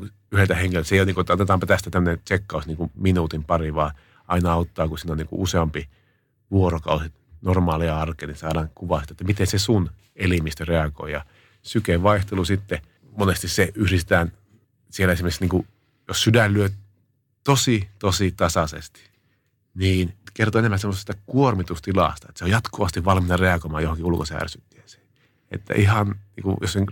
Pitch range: 80-100 Hz